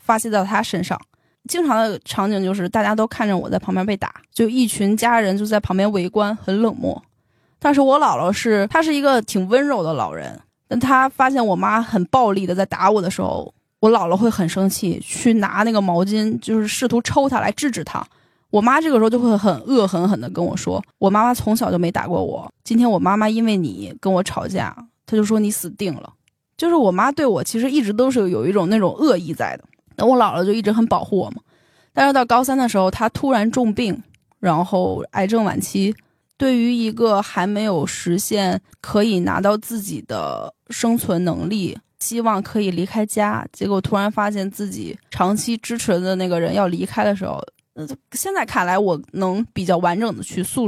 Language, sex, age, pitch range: Chinese, female, 10-29, 190-235 Hz